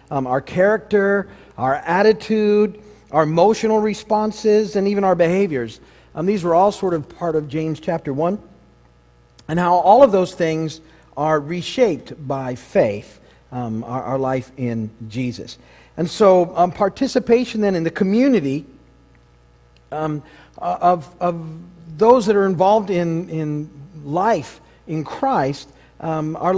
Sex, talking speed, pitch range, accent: male, 140 wpm, 140-195 Hz, American